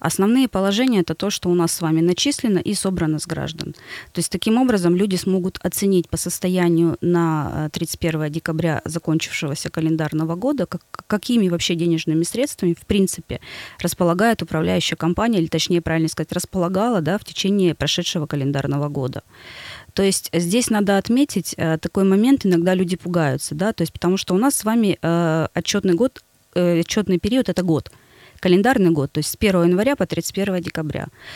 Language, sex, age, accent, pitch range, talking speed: Russian, female, 20-39, native, 160-195 Hz, 150 wpm